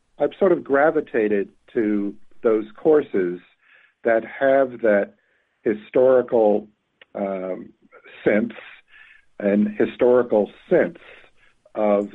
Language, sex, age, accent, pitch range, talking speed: English, male, 50-69, American, 100-125 Hz, 85 wpm